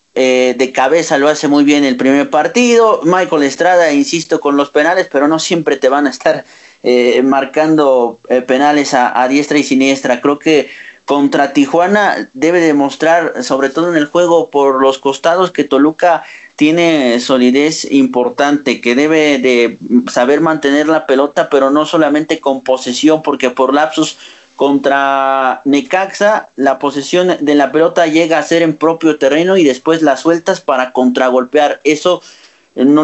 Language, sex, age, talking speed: Spanish, male, 40-59, 160 wpm